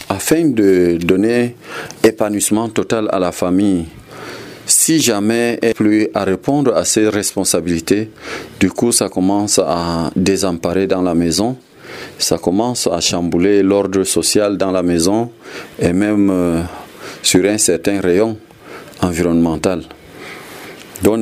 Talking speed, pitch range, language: 125 wpm, 90-110 Hz, French